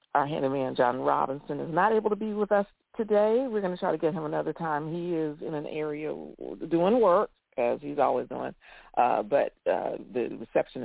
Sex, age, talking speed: female, 50-69, 205 wpm